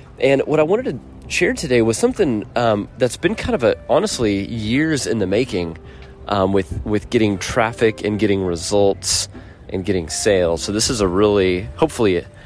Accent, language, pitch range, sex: American, English, 95-115 Hz, male